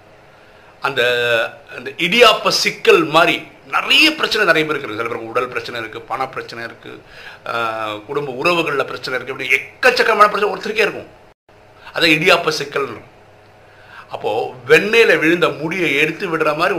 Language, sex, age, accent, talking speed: Tamil, male, 50-69, native, 110 wpm